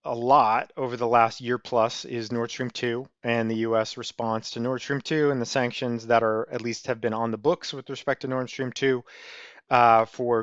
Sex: male